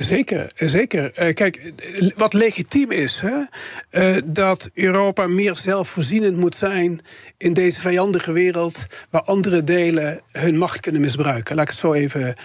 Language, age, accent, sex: Dutch, 40-59, Dutch, male